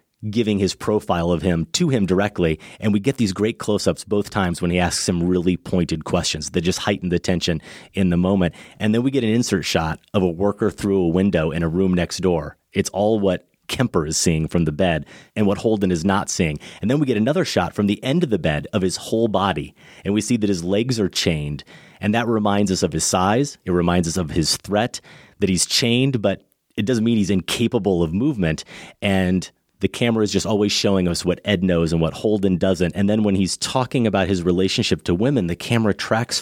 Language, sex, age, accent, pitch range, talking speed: English, male, 30-49, American, 90-105 Hz, 230 wpm